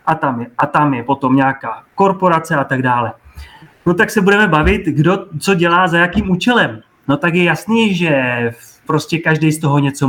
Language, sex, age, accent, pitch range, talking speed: Czech, male, 30-49, native, 145-175 Hz, 195 wpm